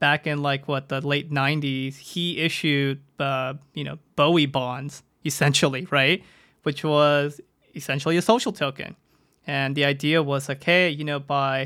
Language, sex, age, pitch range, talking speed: English, male, 20-39, 135-150 Hz, 155 wpm